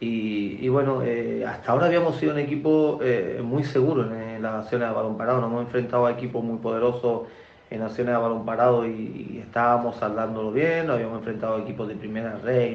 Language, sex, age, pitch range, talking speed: Spanish, male, 30-49, 115-125 Hz, 210 wpm